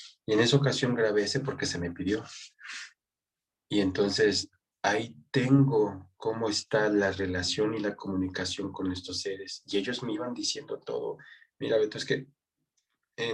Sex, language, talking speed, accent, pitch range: male, Spanish, 155 wpm, Mexican, 100-145 Hz